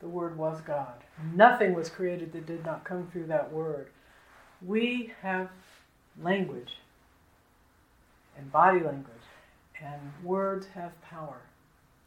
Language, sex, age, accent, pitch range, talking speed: English, female, 60-79, American, 165-270 Hz, 120 wpm